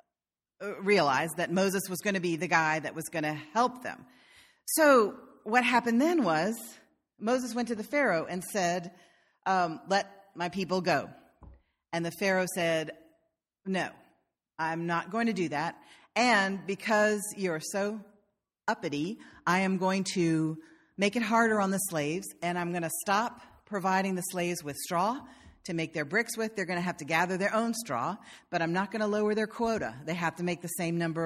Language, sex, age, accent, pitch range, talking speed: English, female, 40-59, American, 165-210 Hz, 185 wpm